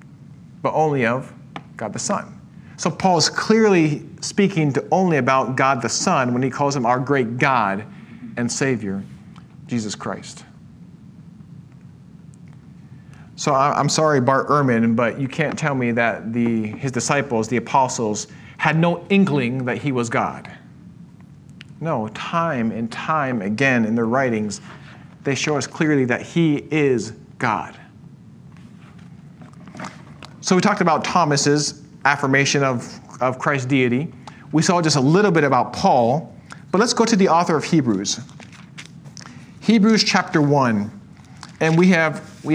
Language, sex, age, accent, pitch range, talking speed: English, male, 40-59, American, 135-170 Hz, 140 wpm